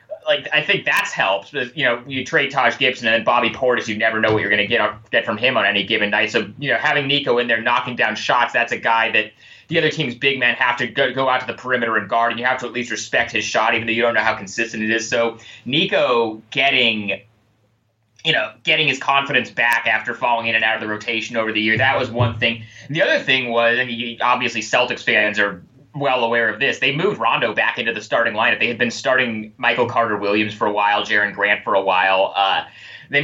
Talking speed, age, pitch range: 255 wpm, 20-39, 110-135 Hz